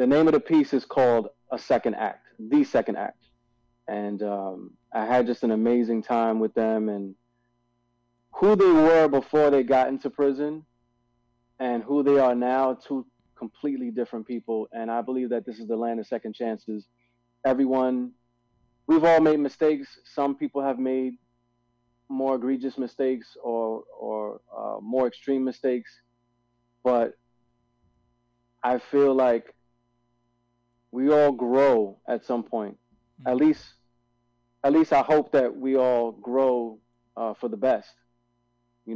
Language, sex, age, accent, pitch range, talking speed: English, male, 30-49, American, 120-135 Hz, 145 wpm